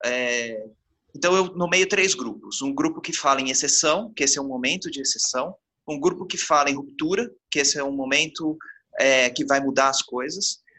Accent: Brazilian